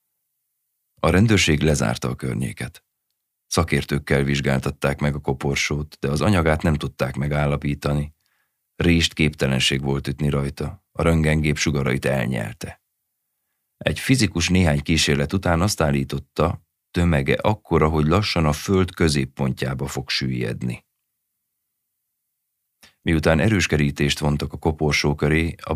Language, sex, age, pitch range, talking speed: Hungarian, male, 30-49, 70-85 Hz, 115 wpm